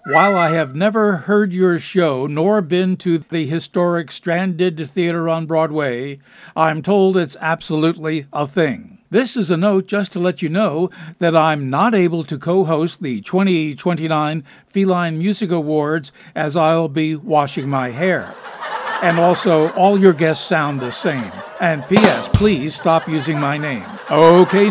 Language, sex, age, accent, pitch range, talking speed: English, male, 60-79, American, 160-190 Hz, 155 wpm